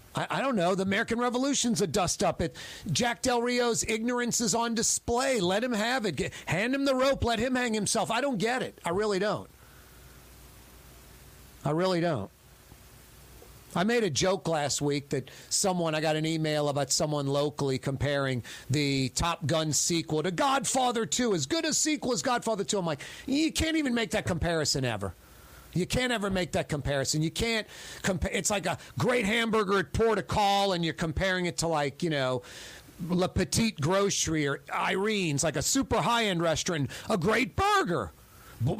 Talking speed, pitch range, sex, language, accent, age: 180 wpm, 150-230 Hz, male, English, American, 40-59